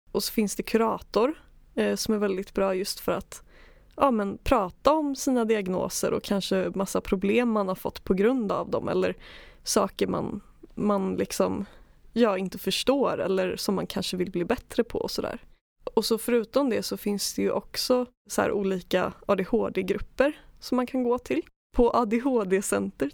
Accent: native